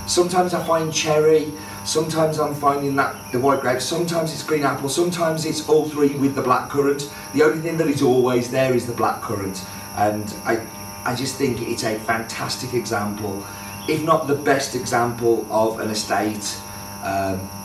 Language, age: English, 30-49